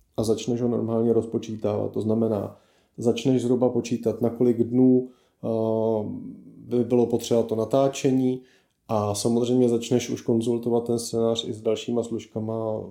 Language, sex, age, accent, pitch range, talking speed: Czech, male, 30-49, native, 110-125 Hz, 130 wpm